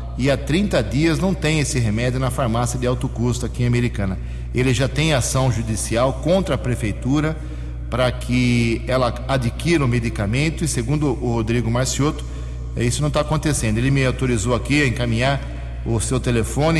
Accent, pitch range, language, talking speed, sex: Brazilian, 115-140 Hz, English, 170 wpm, male